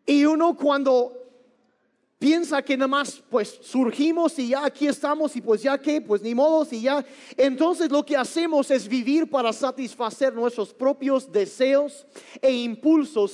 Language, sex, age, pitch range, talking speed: Spanish, male, 40-59, 235-285 Hz, 160 wpm